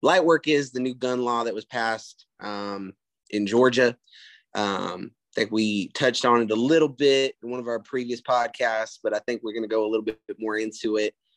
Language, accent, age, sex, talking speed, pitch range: English, American, 20-39, male, 215 wpm, 110-130 Hz